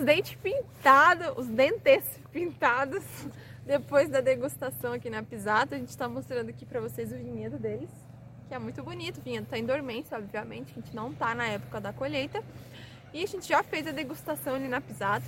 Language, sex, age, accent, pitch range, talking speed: Portuguese, female, 20-39, Brazilian, 230-285 Hz, 195 wpm